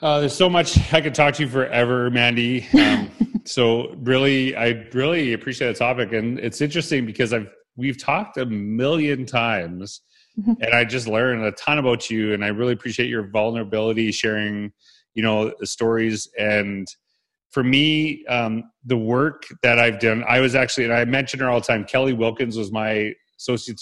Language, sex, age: English, male, 30-49